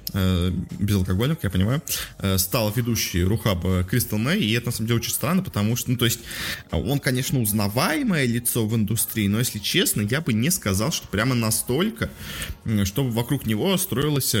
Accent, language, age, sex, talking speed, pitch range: native, Russian, 20-39, male, 165 wpm, 95-120 Hz